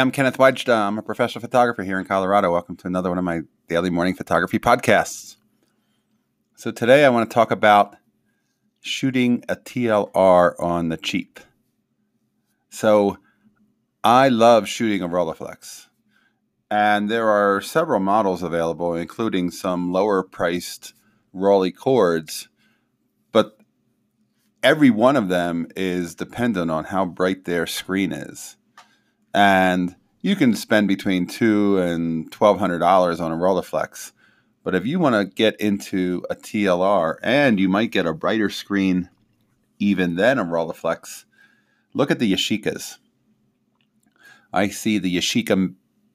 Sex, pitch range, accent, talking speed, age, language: male, 90-105 Hz, American, 135 wpm, 30-49, English